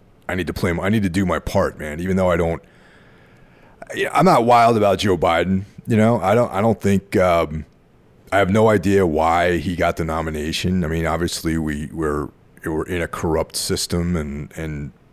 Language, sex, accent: English, male, American